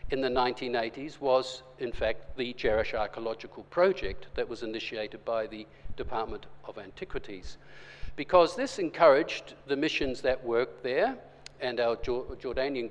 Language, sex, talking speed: English, male, 135 wpm